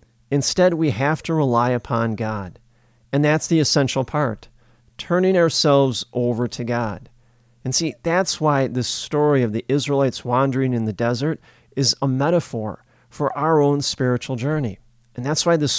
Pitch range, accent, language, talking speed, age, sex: 120-150 Hz, American, English, 160 wpm, 40-59, male